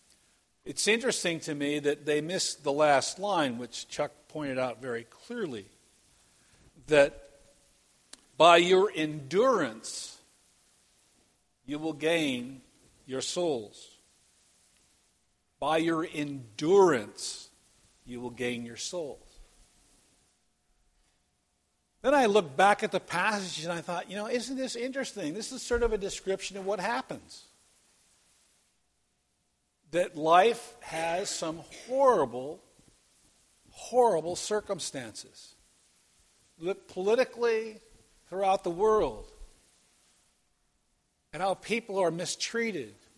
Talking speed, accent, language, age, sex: 105 wpm, American, English, 50-69, male